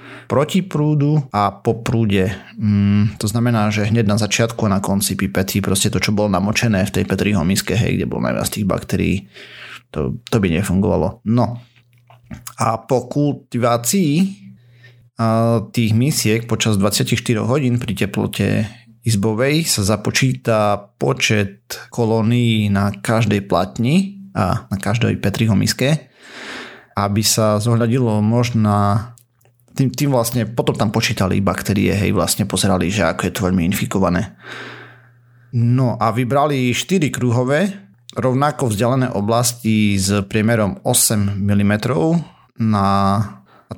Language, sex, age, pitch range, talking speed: Slovak, male, 30-49, 100-120 Hz, 125 wpm